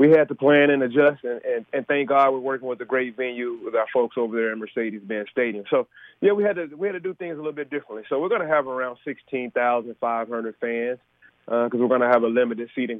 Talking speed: 260 wpm